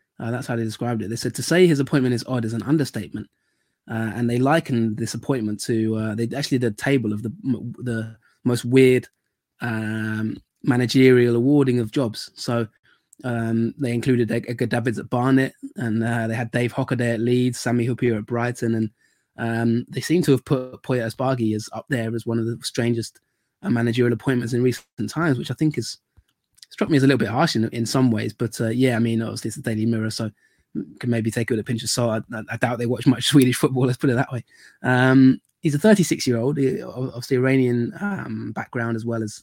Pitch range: 115-130 Hz